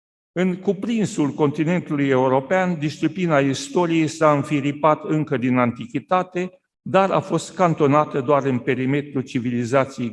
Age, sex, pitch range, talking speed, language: 50-69, male, 135-175 Hz, 115 wpm, Romanian